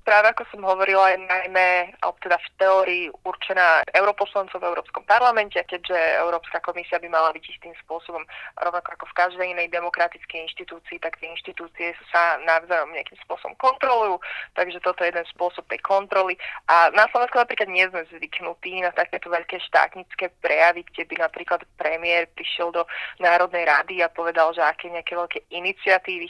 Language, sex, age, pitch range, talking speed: Slovak, female, 20-39, 170-195 Hz, 165 wpm